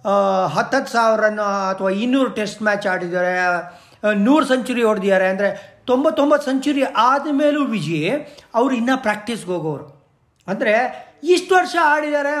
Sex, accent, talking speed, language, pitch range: male, native, 120 wpm, Kannada, 190-275 Hz